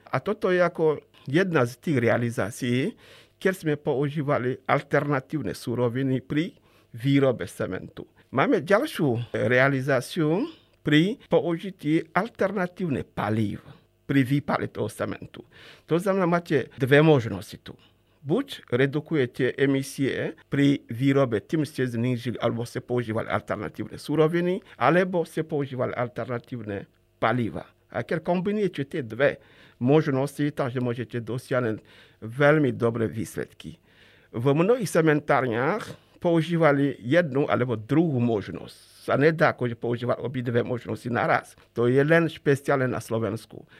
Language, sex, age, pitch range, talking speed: Slovak, male, 50-69, 120-155 Hz, 110 wpm